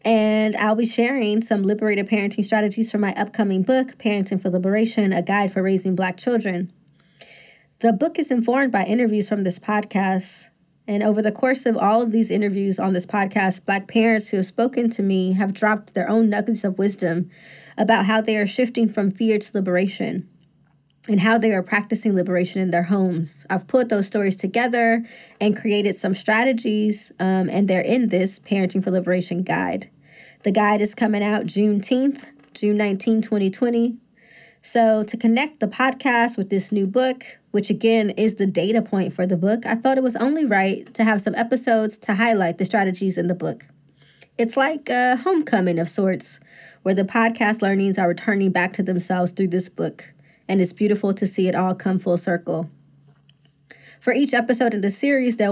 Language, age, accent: English, 20-39, American